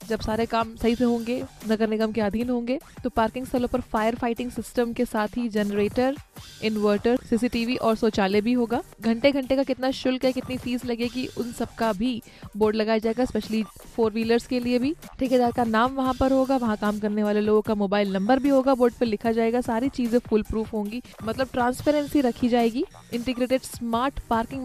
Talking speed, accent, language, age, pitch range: 200 wpm, native, Hindi, 20-39, 220-255 Hz